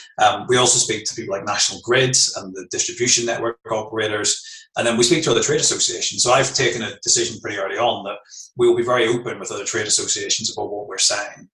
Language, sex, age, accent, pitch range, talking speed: English, male, 30-49, British, 110-170 Hz, 230 wpm